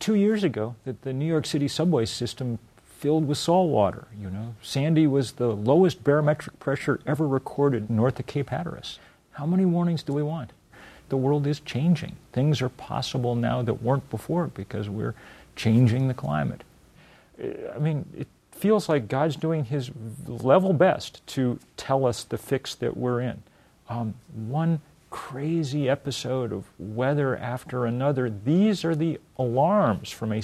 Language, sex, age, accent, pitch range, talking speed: English, male, 40-59, American, 115-150 Hz, 170 wpm